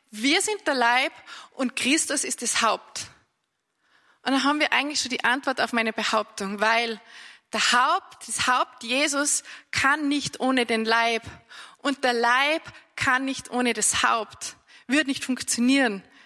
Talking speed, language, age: 155 wpm, German, 20-39